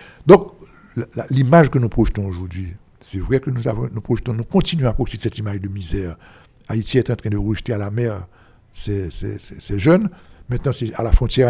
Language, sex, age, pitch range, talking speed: French, male, 60-79, 110-150 Hz, 205 wpm